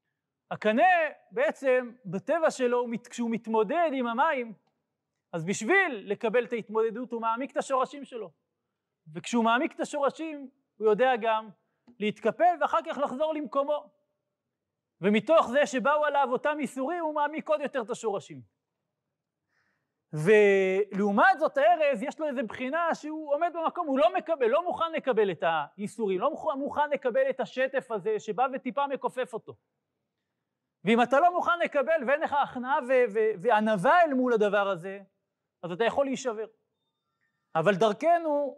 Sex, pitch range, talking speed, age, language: male, 215-295 Hz, 145 wpm, 30-49, Hebrew